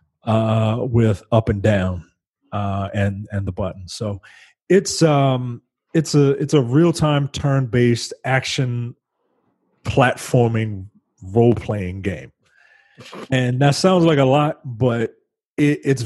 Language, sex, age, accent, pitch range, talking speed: English, male, 30-49, American, 115-150 Hz, 115 wpm